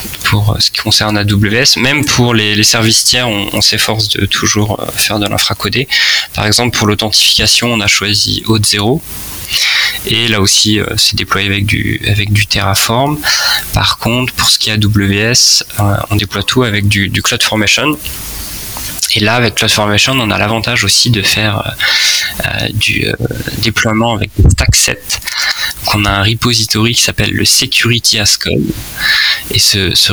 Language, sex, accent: French, male, French